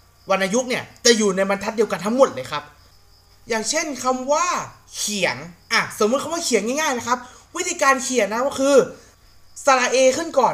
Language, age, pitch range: Thai, 20-39, 195-265 Hz